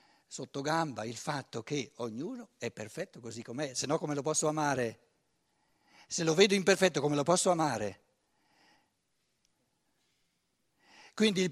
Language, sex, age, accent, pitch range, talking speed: Italian, male, 60-79, native, 130-185 Hz, 135 wpm